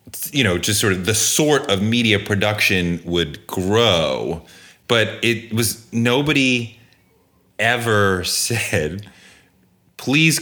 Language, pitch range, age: English, 95-125 Hz, 30-49